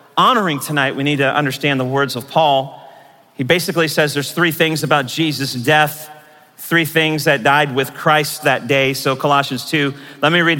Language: English